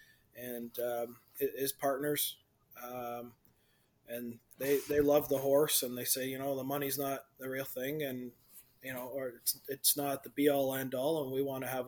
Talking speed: 195 wpm